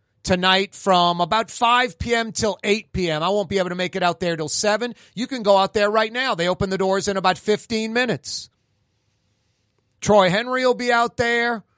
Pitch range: 170-230 Hz